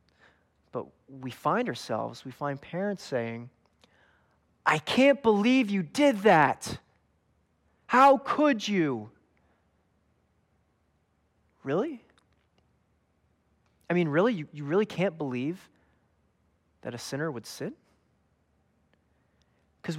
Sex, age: male, 30-49